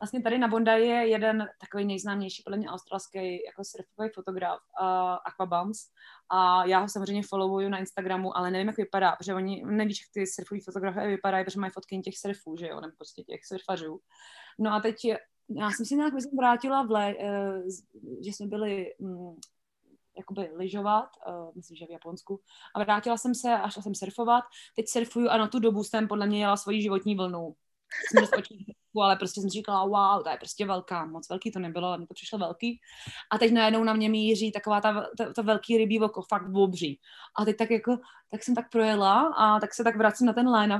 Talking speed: 200 wpm